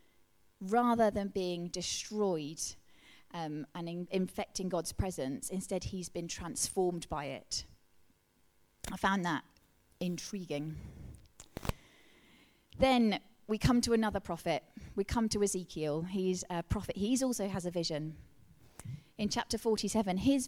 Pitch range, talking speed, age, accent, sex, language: 175-220 Hz, 120 wpm, 30-49, British, female, English